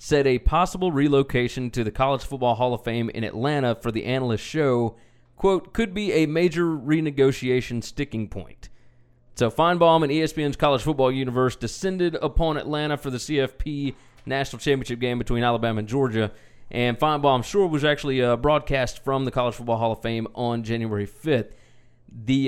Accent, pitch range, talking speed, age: American, 120-145 Hz, 170 wpm, 30-49